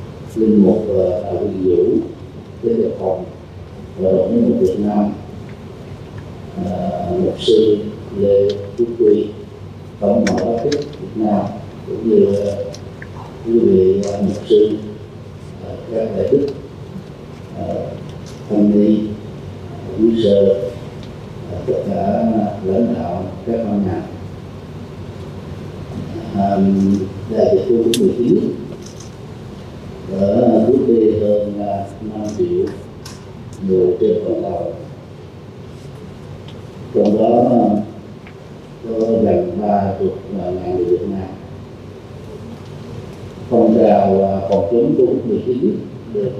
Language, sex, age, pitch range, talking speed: Vietnamese, male, 40-59, 100-115 Hz, 100 wpm